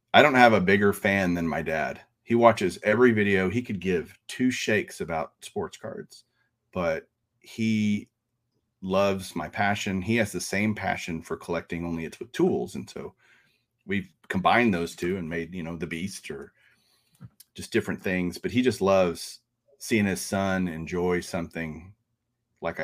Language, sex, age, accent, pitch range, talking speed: English, male, 40-59, American, 90-110 Hz, 165 wpm